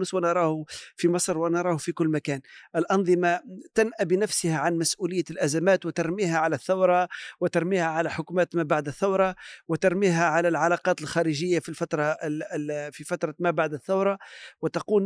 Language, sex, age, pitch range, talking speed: Arabic, male, 40-59, 170-215 Hz, 135 wpm